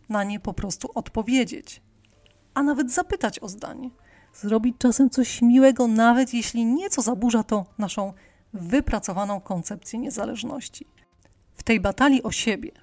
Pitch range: 210-260 Hz